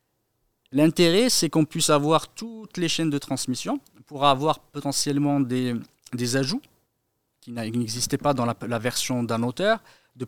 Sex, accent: male, French